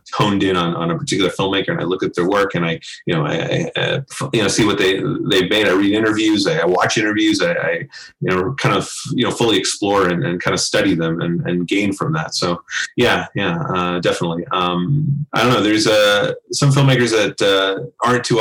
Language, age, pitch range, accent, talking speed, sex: English, 30-49, 90-115 Hz, American, 235 wpm, male